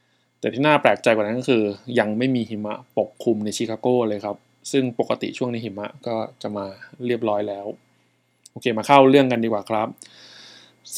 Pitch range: 105-125 Hz